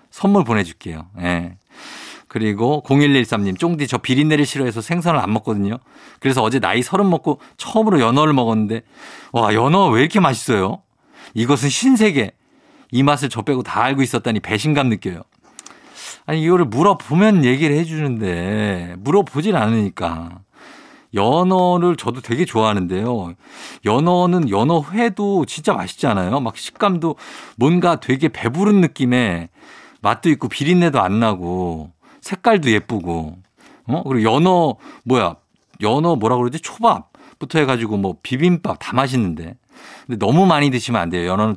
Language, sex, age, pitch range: Korean, male, 50-69, 105-170 Hz